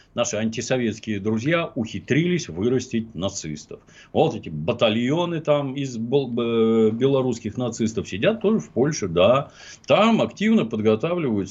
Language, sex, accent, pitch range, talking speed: Russian, male, native, 110-150 Hz, 110 wpm